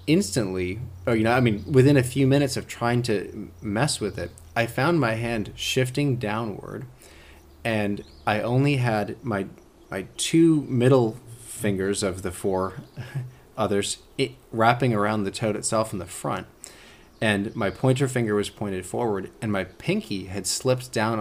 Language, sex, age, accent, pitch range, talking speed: English, male, 30-49, American, 90-120 Hz, 160 wpm